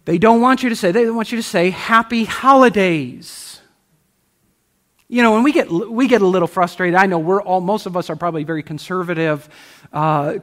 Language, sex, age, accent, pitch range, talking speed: English, male, 50-69, American, 170-230 Hz, 205 wpm